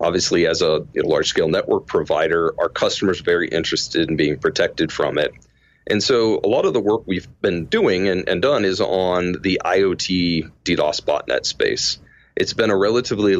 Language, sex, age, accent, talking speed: English, male, 40-59, American, 175 wpm